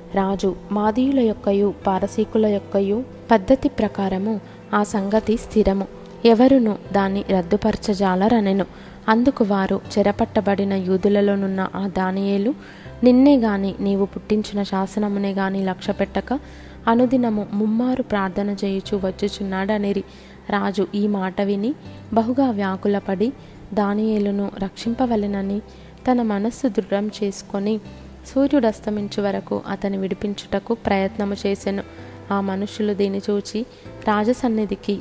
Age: 20-39